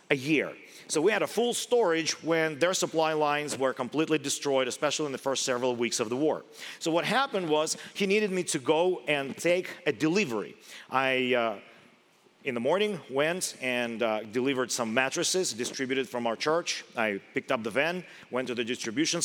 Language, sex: English, male